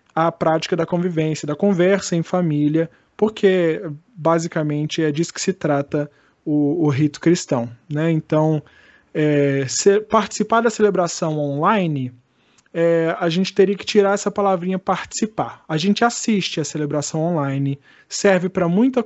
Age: 20-39